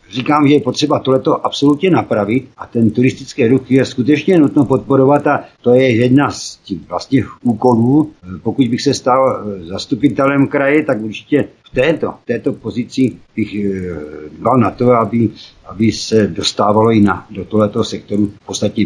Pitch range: 110-140 Hz